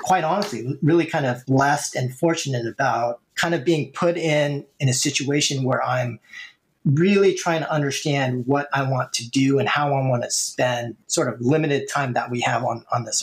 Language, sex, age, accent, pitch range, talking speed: English, male, 30-49, American, 125-155 Hz, 200 wpm